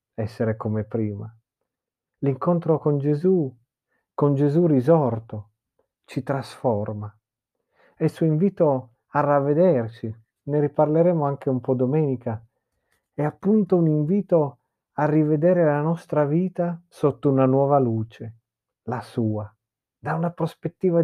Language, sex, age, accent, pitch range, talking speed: Italian, male, 40-59, native, 115-155 Hz, 115 wpm